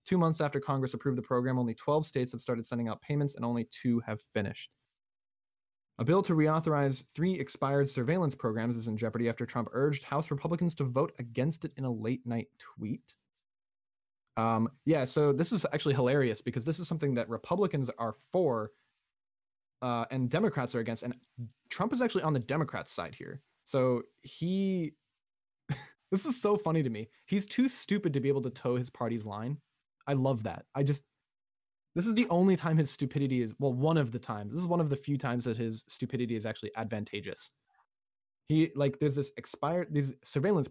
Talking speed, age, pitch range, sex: 195 wpm, 20-39, 120-150 Hz, male